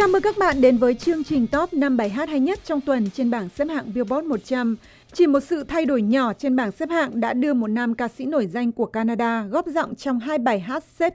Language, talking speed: Vietnamese, 265 wpm